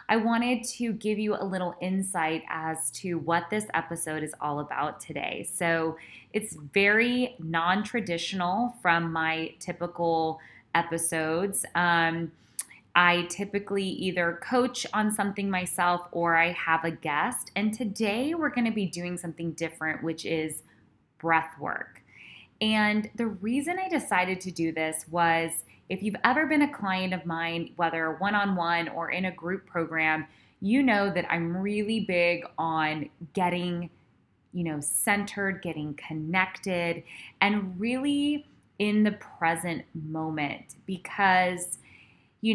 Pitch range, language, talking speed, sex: 165-205 Hz, English, 135 wpm, female